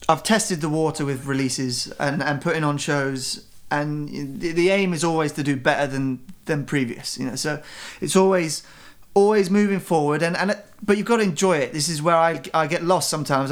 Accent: British